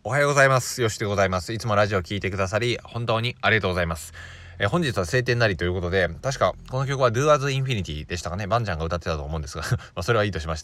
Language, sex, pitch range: Japanese, male, 85-120 Hz